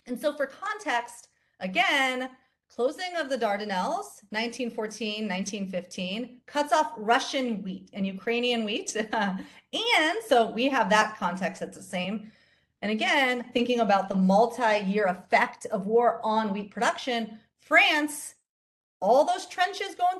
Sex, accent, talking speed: female, American, 130 wpm